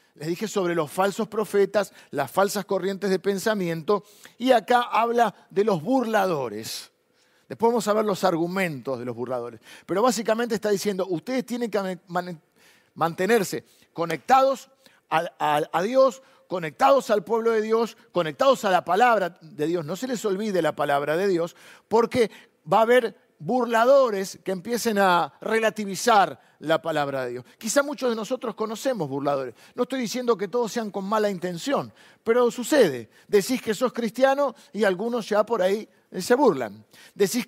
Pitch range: 175-230 Hz